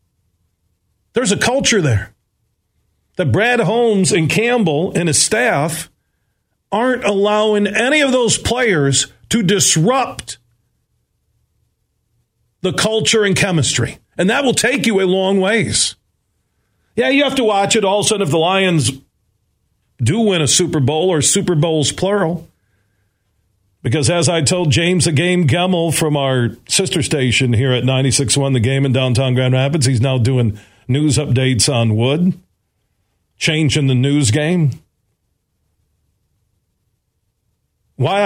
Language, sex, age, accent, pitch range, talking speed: English, male, 40-59, American, 115-180 Hz, 140 wpm